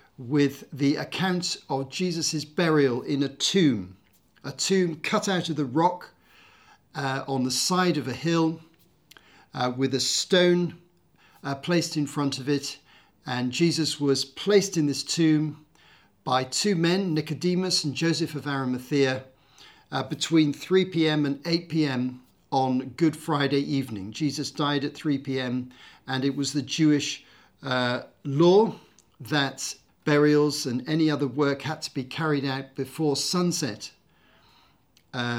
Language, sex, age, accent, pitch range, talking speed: English, male, 50-69, British, 130-160 Hz, 145 wpm